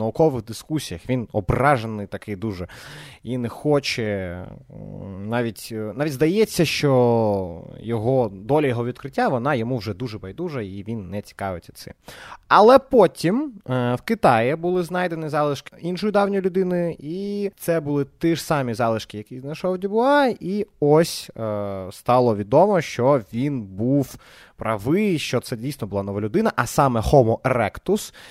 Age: 20-39